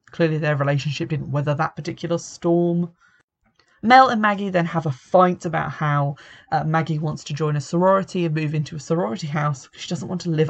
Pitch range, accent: 155-180 Hz, British